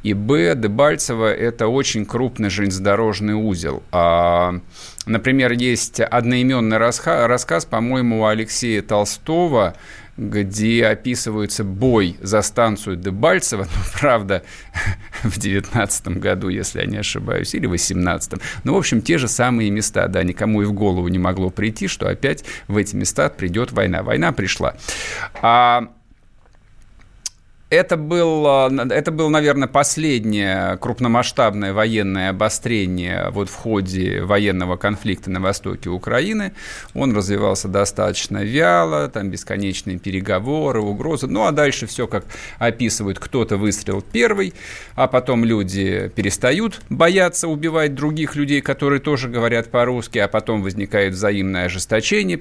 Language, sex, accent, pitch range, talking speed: Russian, male, native, 95-125 Hz, 130 wpm